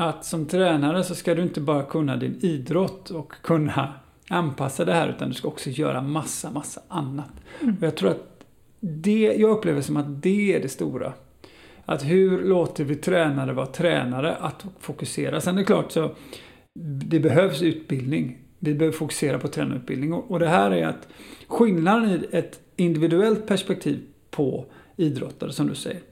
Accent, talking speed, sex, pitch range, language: native, 170 wpm, male, 150-185 Hz, Swedish